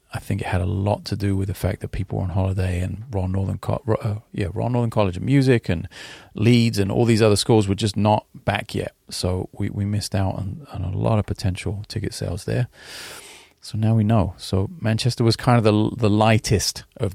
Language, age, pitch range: English, 30-49, 95-115 Hz